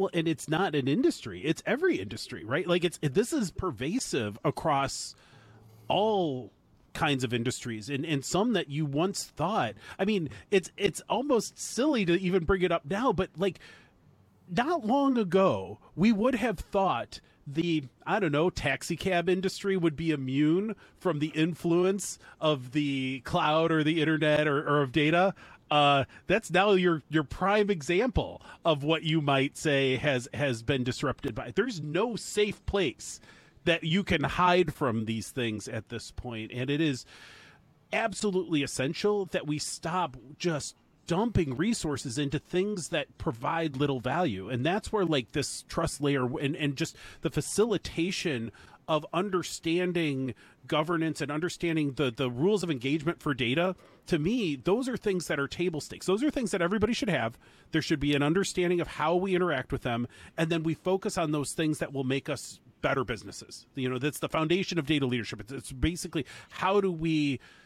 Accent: American